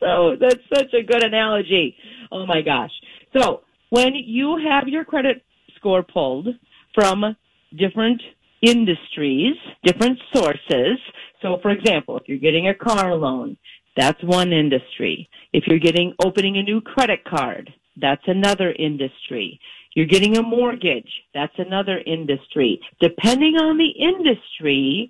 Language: English